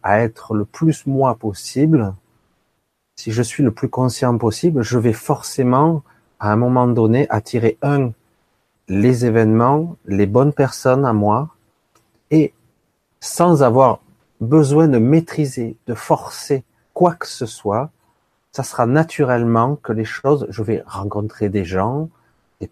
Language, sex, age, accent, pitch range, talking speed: French, male, 40-59, French, 110-140 Hz, 140 wpm